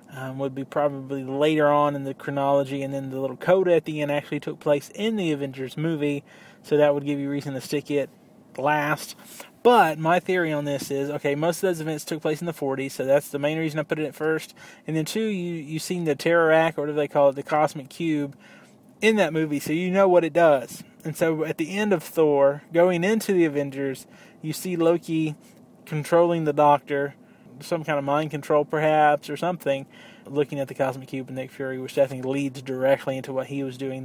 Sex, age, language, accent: male, 20-39, English, American